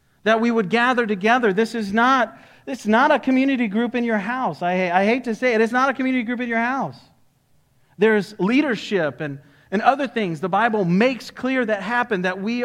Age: 40-59